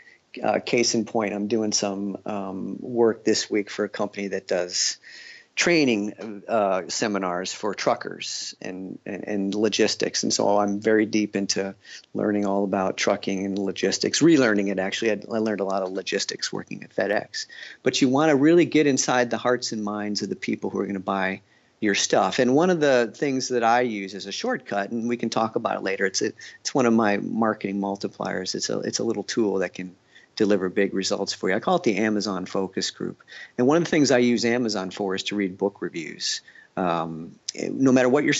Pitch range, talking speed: 100-120 Hz, 210 wpm